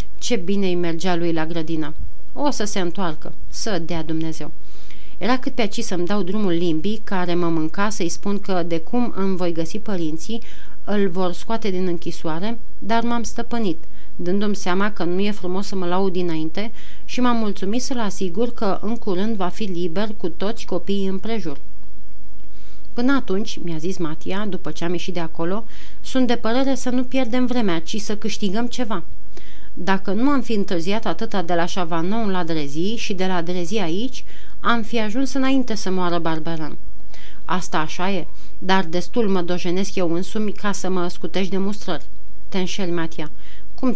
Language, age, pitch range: Romanian, 30-49, 175-220 Hz